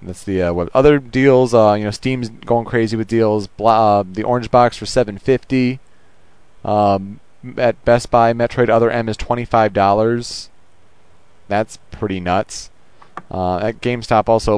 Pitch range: 90-115 Hz